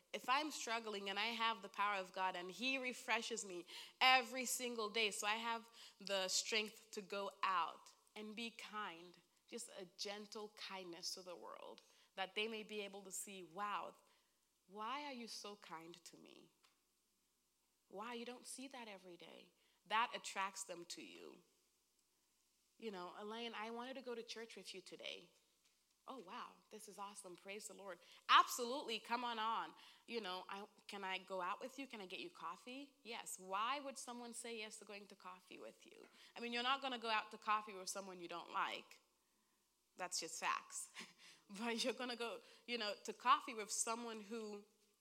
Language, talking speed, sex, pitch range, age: English, 190 wpm, female, 195-240 Hz, 30-49